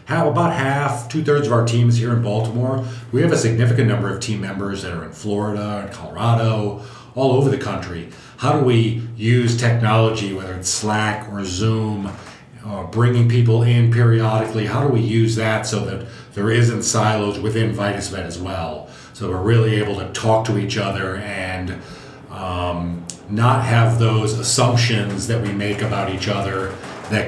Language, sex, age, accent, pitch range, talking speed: English, male, 40-59, American, 100-120 Hz, 175 wpm